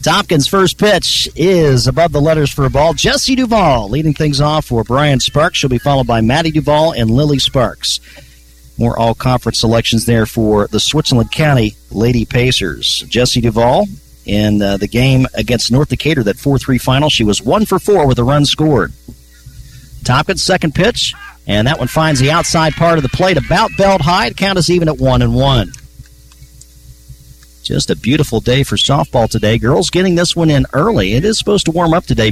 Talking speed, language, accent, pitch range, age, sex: 185 wpm, English, American, 115-155 Hz, 50-69, male